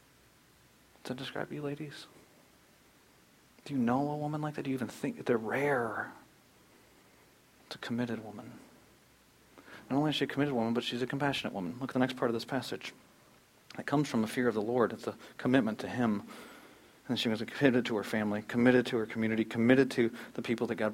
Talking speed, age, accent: 205 wpm, 40-59, American